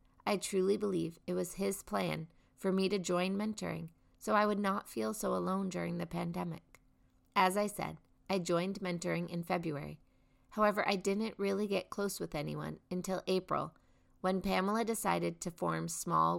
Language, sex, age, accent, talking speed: English, female, 30-49, American, 170 wpm